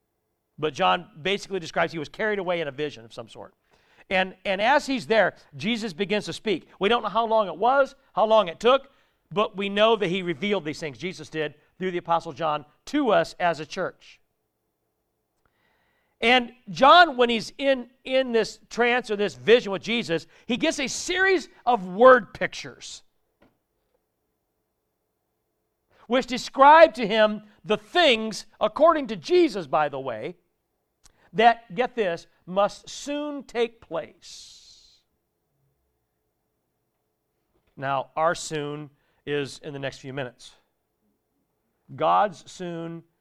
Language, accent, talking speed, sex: English, American, 145 wpm, male